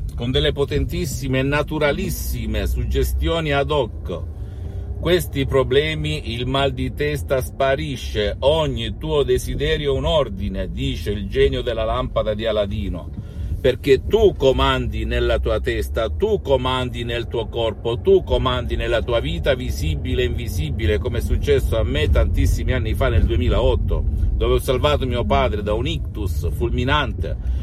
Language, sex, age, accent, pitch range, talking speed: Italian, male, 50-69, native, 85-135 Hz, 145 wpm